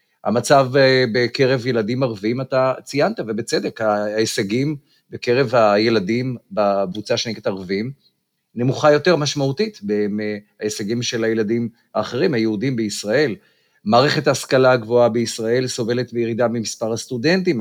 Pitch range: 110-145 Hz